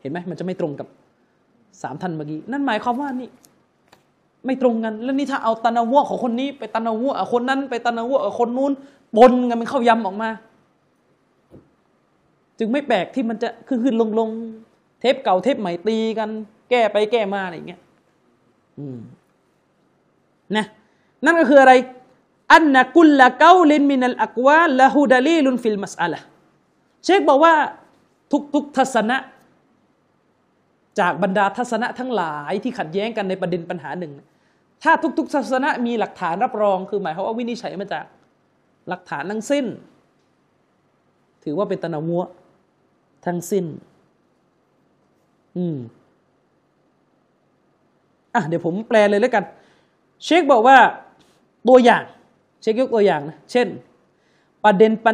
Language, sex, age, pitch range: Thai, male, 30-49, 190-260 Hz